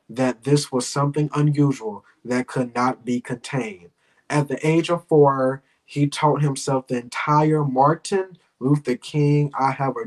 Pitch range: 125-150 Hz